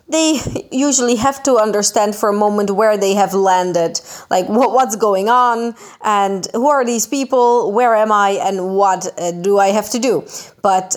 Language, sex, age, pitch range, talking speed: Italian, female, 20-39, 195-275 Hz, 175 wpm